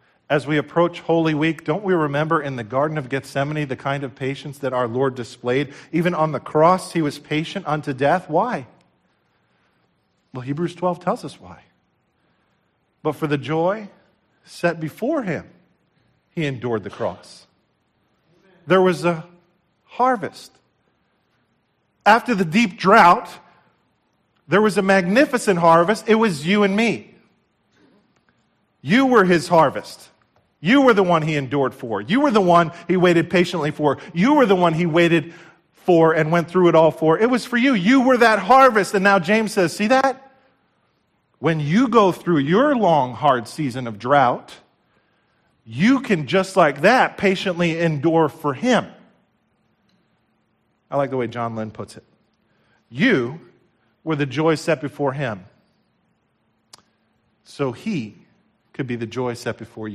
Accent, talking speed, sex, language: American, 155 wpm, male, English